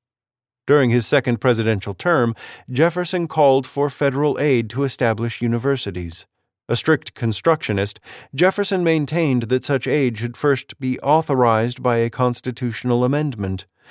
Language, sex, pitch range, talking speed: English, male, 110-140 Hz, 125 wpm